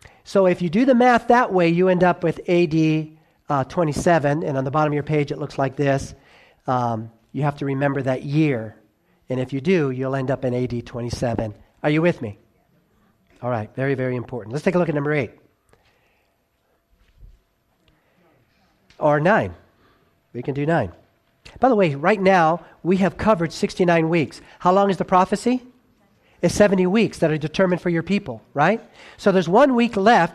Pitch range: 140-195 Hz